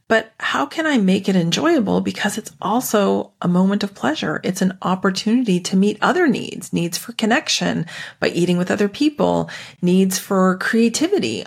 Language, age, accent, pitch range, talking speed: English, 40-59, American, 180-240 Hz, 165 wpm